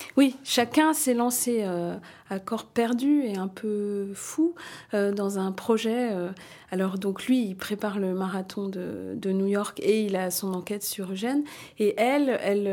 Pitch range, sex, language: 190-230 Hz, female, French